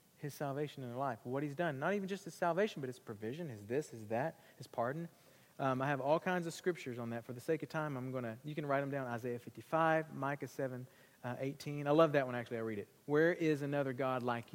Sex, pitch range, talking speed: male, 125-165 Hz, 260 wpm